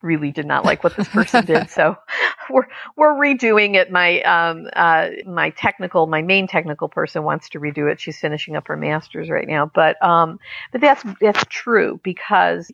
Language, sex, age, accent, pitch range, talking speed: English, female, 50-69, American, 170-225 Hz, 190 wpm